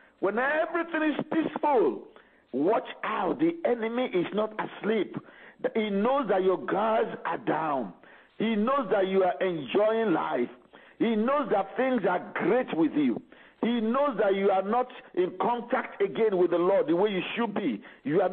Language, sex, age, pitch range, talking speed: English, male, 50-69, 200-270 Hz, 170 wpm